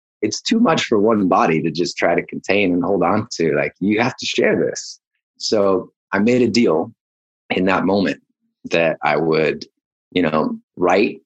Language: English